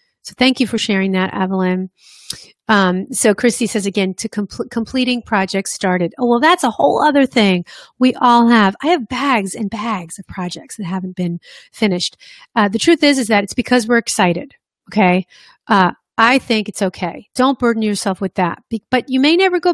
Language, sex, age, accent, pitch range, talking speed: English, female, 40-59, American, 195-255 Hz, 190 wpm